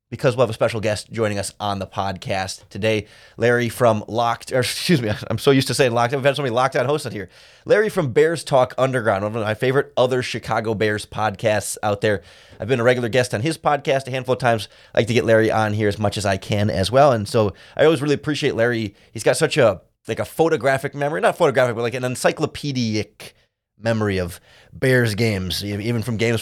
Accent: American